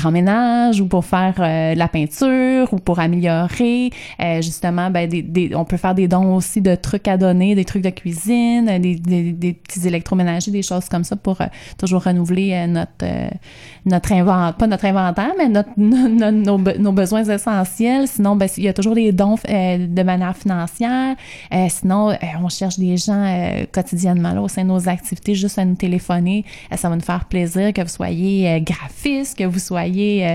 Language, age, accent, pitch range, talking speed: French, 20-39, Canadian, 175-200 Hz, 205 wpm